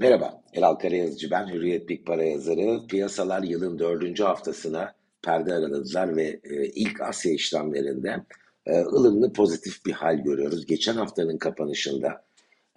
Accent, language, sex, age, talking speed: native, Turkish, male, 60-79, 115 wpm